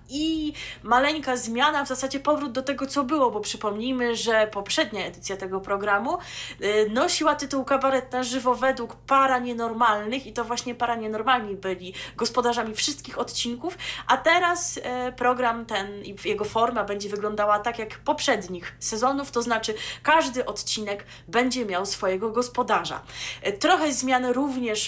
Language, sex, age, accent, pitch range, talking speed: Polish, female, 20-39, native, 205-255 Hz, 140 wpm